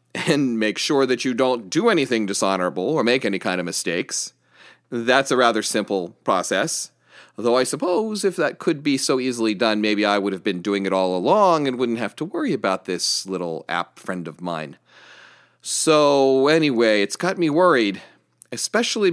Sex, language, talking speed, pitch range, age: male, English, 180 wpm, 105-135 Hz, 40-59